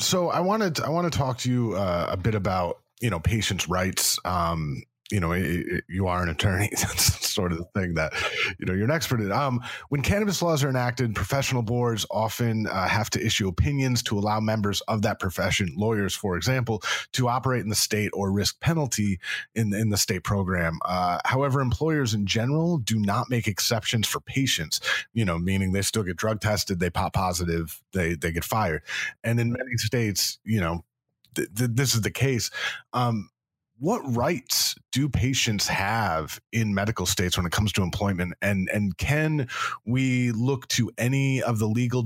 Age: 30-49